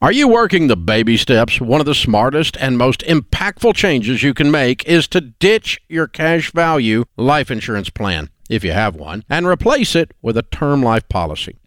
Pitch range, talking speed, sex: 115-175 Hz, 195 wpm, male